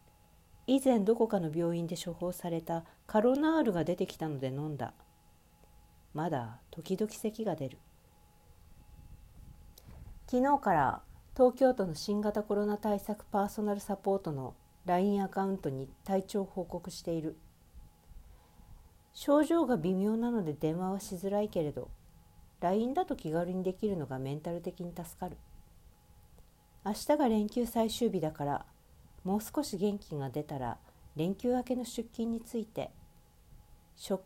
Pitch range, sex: 150-215 Hz, female